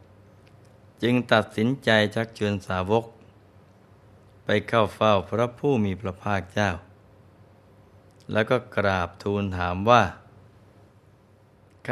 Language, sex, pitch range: Thai, male, 100-110 Hz